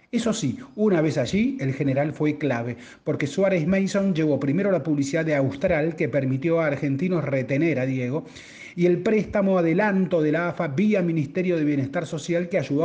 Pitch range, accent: 140-190 Hz, Argentinian